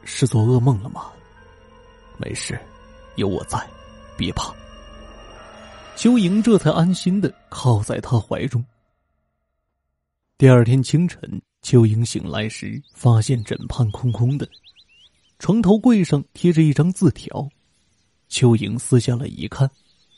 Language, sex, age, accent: Chinese, male, 30-49, native